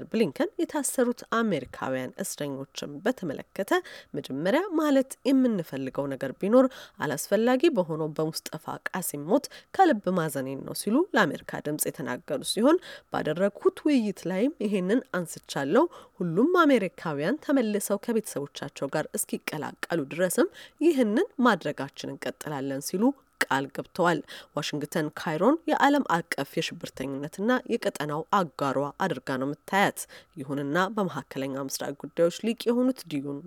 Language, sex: Amharic, female